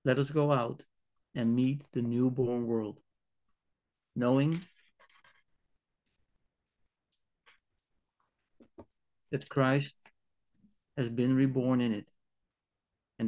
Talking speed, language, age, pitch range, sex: 80 wpm, German, 40-59, 110-130 Hz, male